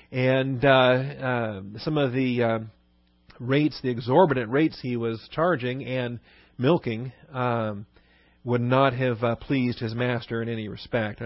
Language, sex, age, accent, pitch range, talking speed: English, male, 40-59, American, 120-155 Hz, 145 wpm